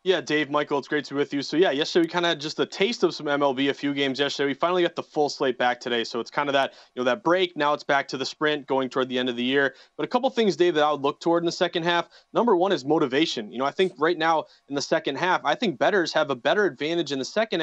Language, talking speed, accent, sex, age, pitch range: English, 310 wpm, American, male, 30-49, 140-185 Hz